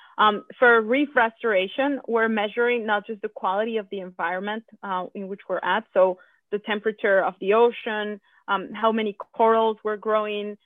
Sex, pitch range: female, 190-225 Hz